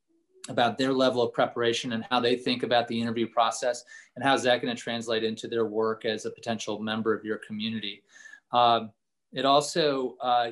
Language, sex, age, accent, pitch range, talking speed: English, male, 30-49, American, 115-135 Hz, 195 wpm